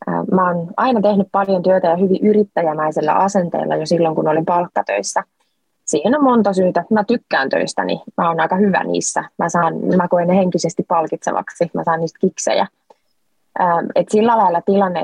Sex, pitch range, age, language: female, 165-205 Hz, 20-39, Finnish